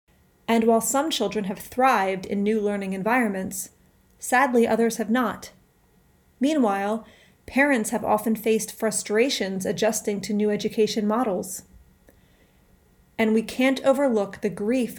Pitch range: 200-230 Hz